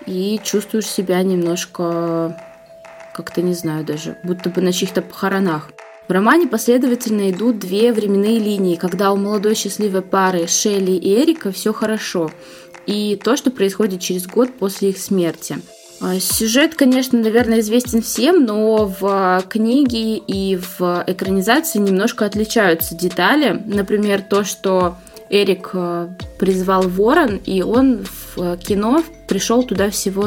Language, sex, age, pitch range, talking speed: Russian, female, 20-39, 180-220 Hz, 130 wpm